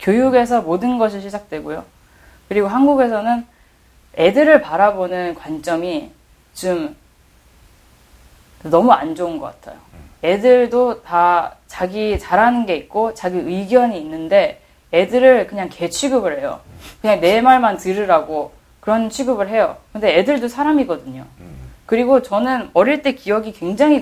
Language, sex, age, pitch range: Korean, female, 10-29, 155-235 Hz